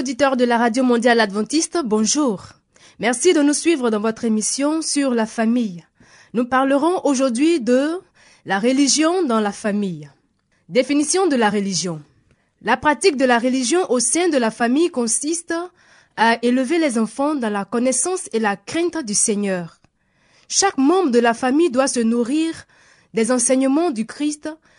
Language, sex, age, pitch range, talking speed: French, female, 20-39, 225-300 Hz, 155 wpm